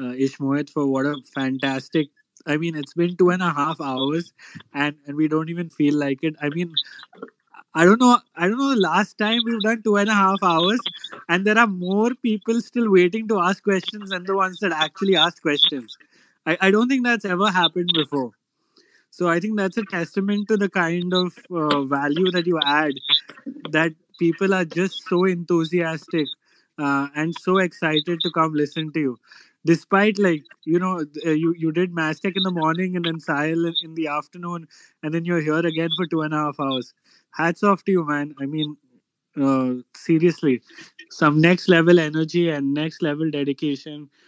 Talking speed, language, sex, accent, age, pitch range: 195 wpm, Hindi, male, native, 20-39, 150-190 Hz